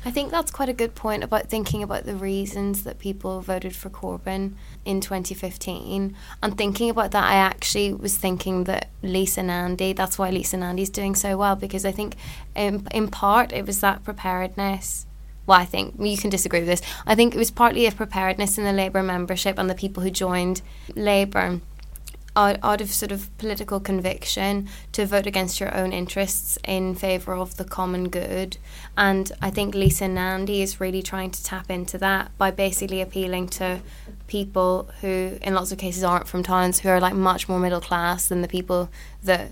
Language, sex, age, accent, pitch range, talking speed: English, female, 20-39, British, 185-200 Hz, 190 wpm